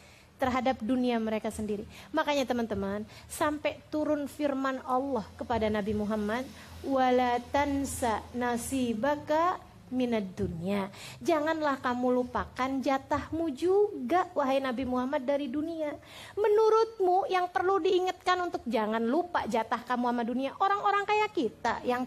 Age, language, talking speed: 30-49, Indonesian, 115 wpm